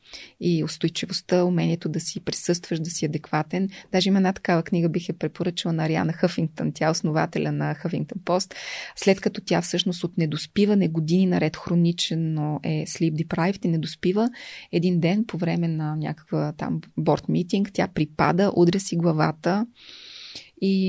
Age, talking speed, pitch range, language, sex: 20-39, 155 wpm, 165-195 Hz, Bulgarian, female